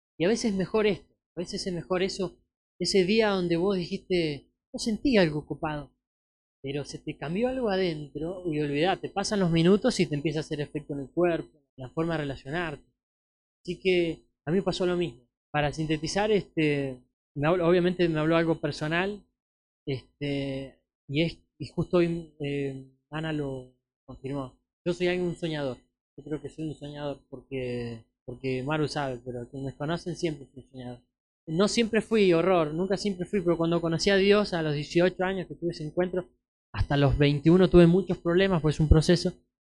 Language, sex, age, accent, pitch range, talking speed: Spanish, male, 20-39, Argentinian, 140-180 Hz, 185 wpm